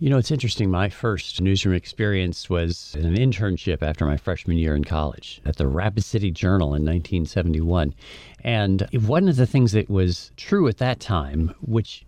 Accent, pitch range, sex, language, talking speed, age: American, 85-110 Hz, male, English, 185 wpm, 50-69